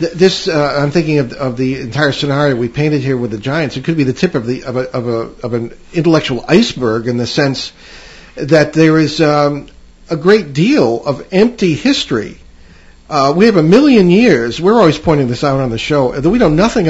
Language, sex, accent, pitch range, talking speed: English, male, American, 125-160 Hz, 215 wpm